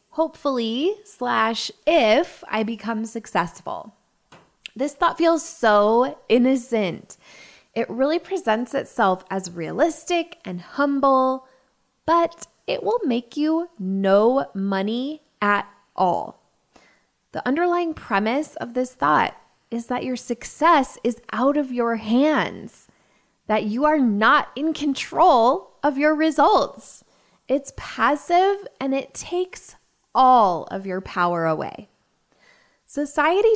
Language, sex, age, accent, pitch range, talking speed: English, female, 20-39, American, 210-295 Hz, 115 wpm